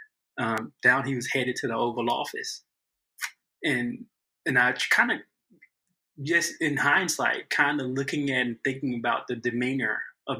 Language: English